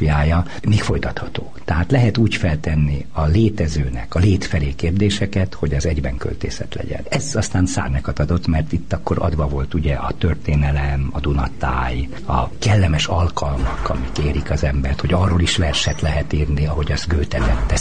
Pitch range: 70-85 Hz